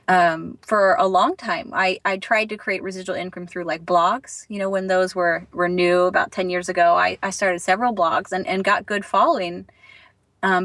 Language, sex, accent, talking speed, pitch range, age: English, female, American, 210 wpm, 180-220 Hz, 30-49